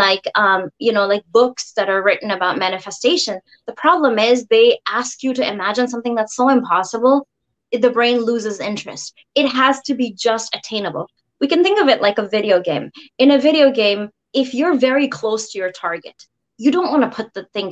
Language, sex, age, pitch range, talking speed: English, female, 20-39, 200-265 Hz, 200 wpm